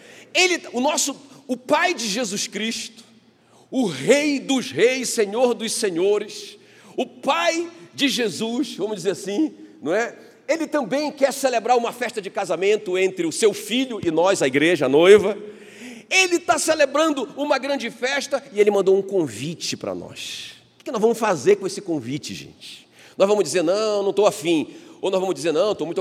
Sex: male